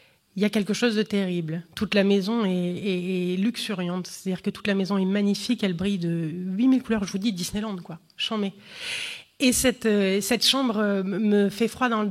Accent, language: French, French